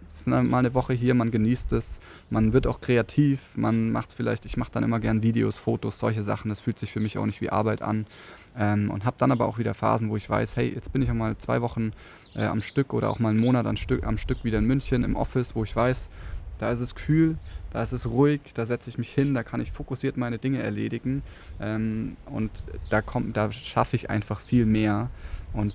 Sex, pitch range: male, 105-125 Hz